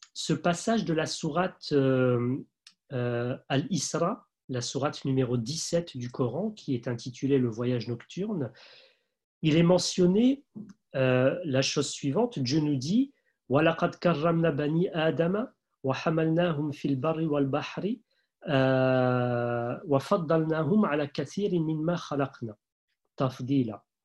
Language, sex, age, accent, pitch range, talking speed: French, male, 40-59, French, 130-185 Hz, 80 wpm